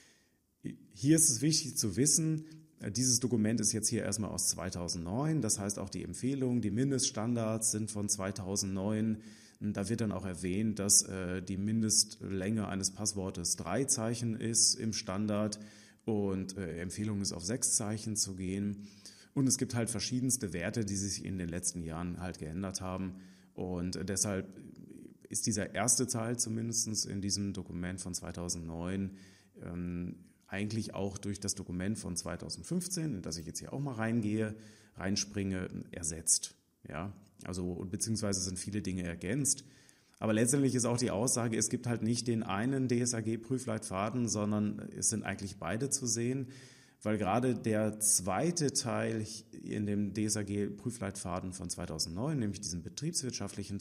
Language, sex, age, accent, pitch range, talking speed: German, male, 30-49, German, 95-115 Hz, 145 wpm